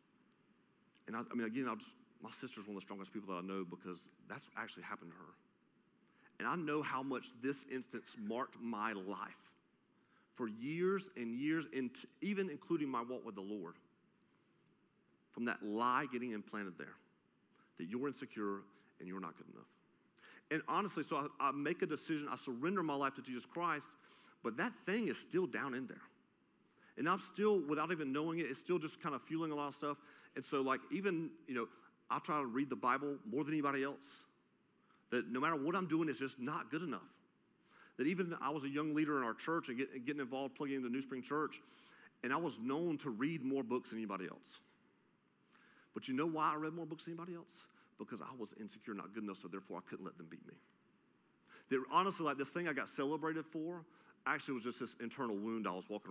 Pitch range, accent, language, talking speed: 110-155 Hz, American, English, 215 wpm